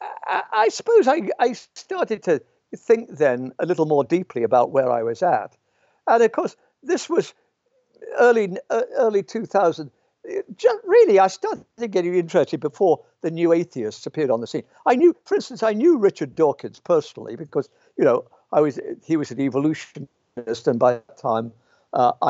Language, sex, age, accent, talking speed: English, male, 60-79, British, 165 wpm